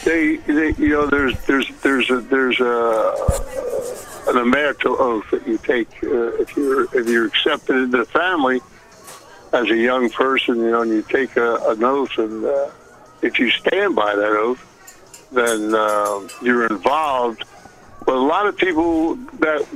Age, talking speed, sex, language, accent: 60-79, 165 wpm, male, English, American